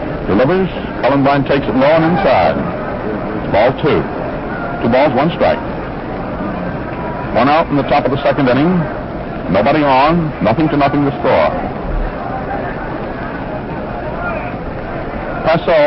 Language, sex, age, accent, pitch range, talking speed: English, male, 60-79, American, 115-155 Hz, 120 wpm